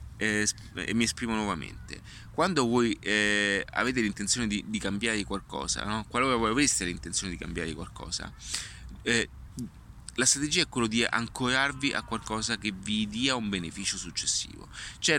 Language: Italian